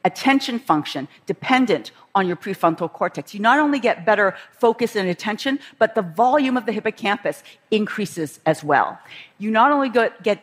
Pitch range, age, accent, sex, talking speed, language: 175-235 Hz, 50-69, American, female, 160 wpm, English